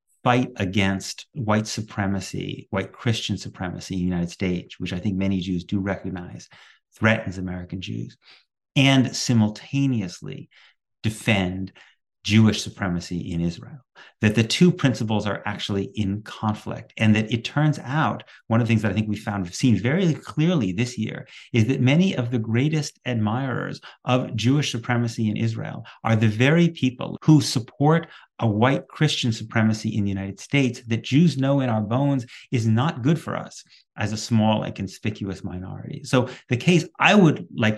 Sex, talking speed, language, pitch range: male, 170 wpm, English, 105-135 Hz